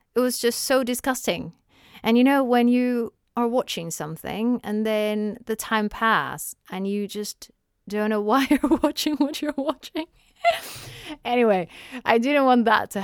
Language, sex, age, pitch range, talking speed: English, female, 30-49, 180-245 Hz, 160 wpm